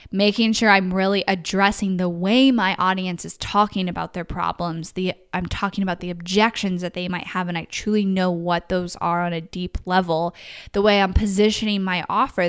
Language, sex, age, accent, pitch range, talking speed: English, female, 10-29, American, 175-205 Hz, 195 wpm